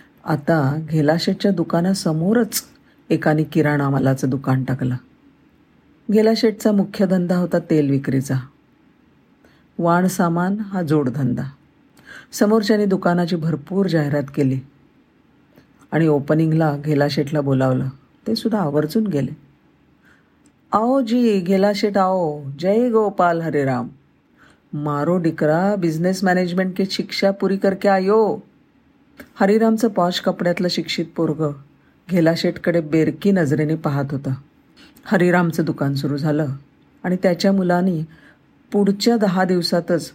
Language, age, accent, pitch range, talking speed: Marathi, 50-69, native, 150-195 Hz, 95 wpm